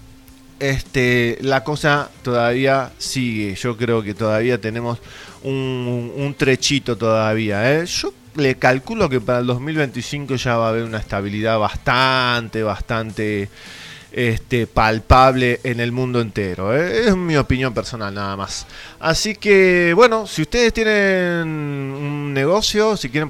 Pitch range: 125-155 Hz